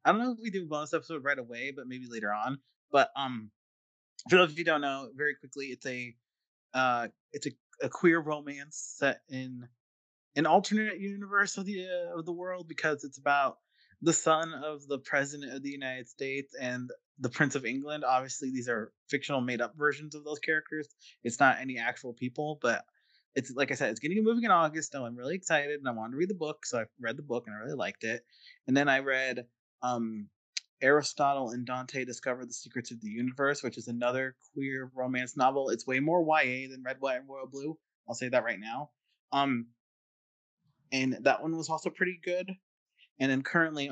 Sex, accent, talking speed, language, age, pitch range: male, American, 210 wpm, English, 30-49, 125-155 Hz